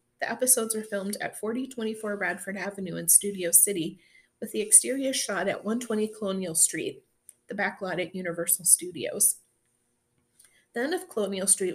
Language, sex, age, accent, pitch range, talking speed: English, female, 30-49, American, 180-220 Hz, 155 wpm